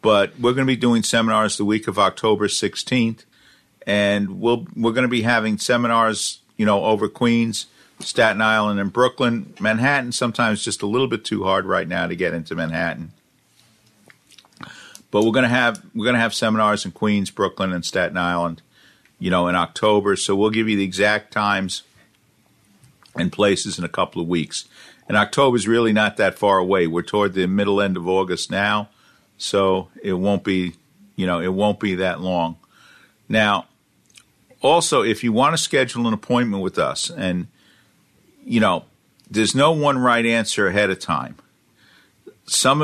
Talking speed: 175 wpm